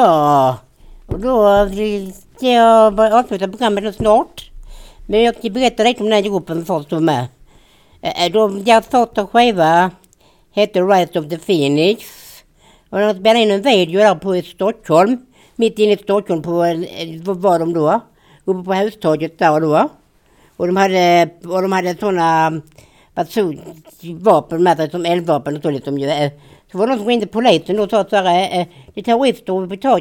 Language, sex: Swedish, female